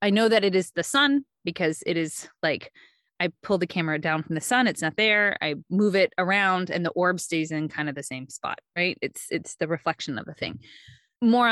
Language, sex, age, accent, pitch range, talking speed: English, female, 20-39, American, 165-215 Hz, 235 wpm